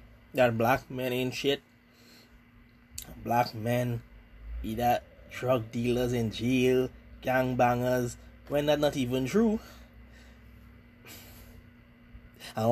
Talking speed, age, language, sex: 95 wpm, 20-39, English, male